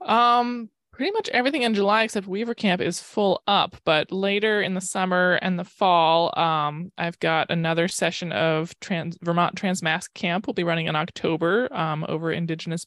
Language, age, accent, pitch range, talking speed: English, 20-39, American, 160-190 Hz, 175 wpm